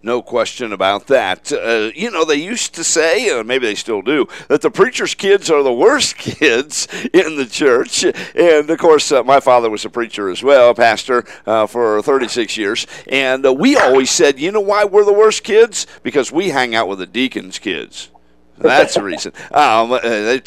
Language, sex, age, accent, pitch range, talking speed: English, male, 50-69, American, 115-145 Hz, 200 wpm